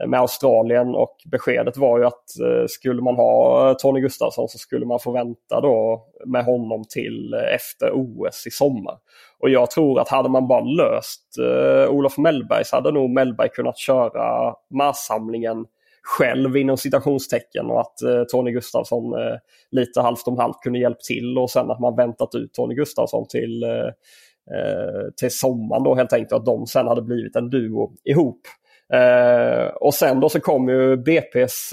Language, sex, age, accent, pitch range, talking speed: Swedish, male, 20-39, native, 120-135 Hz, 170 wpm